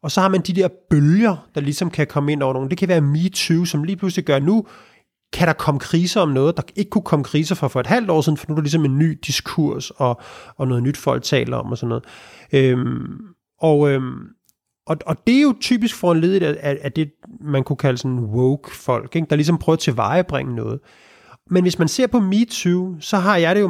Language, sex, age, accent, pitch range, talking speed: Danish, male, 30-49, native, 135-185 Hz, 245 wpm